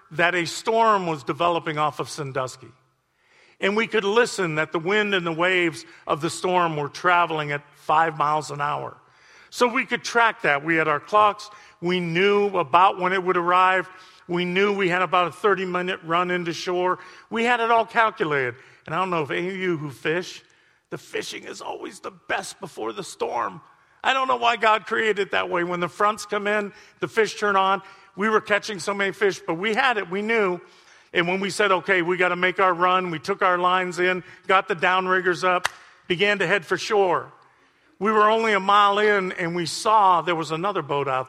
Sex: male